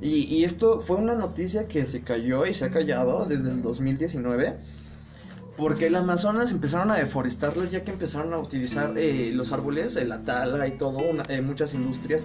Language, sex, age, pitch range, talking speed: Spanish, male, 20-39, 130-165 Hz, 180 wpm